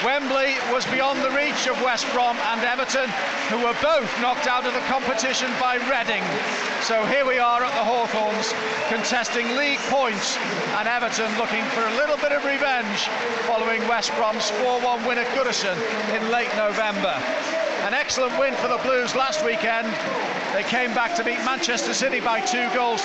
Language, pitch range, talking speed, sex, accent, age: English, 225-255 Hz, 175 wpm, male, British, 40-59